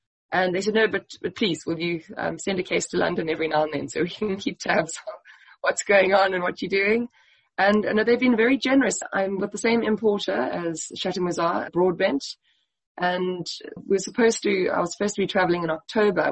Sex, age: female, 20-39